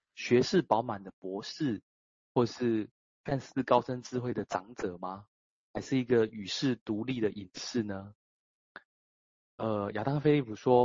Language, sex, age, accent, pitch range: Chinese, male, 30-49, native, 100-130 Hz